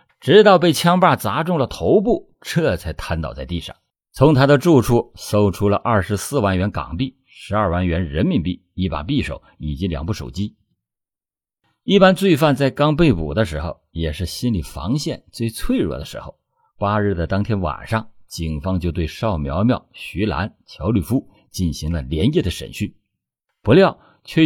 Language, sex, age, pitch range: Chinese, male, 50-69, 90-130 Hz